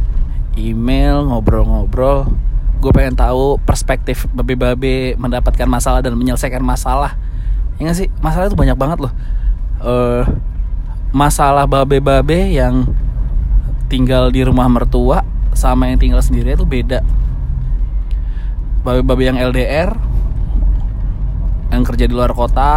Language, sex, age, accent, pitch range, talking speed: Indonesian, male, 20-39, native, 100-130 Hz, 110 wpm